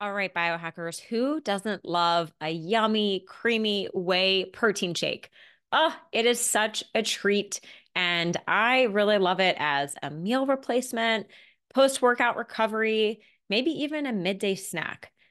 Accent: American